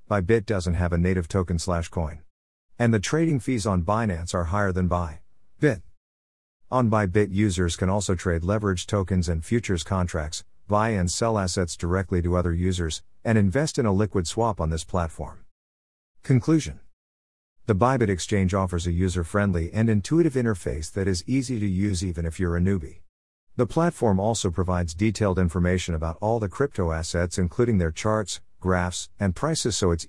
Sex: male